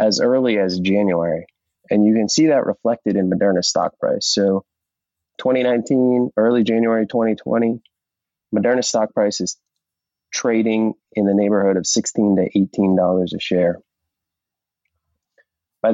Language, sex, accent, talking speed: English, male, American, 130 wpm